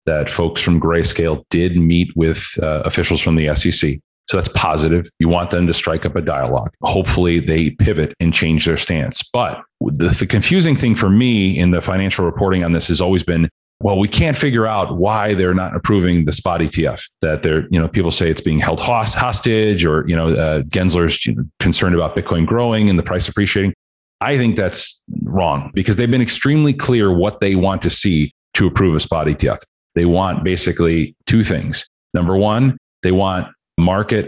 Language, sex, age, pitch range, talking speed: English, male, 40-59, 85-100 Hz, 200 wpm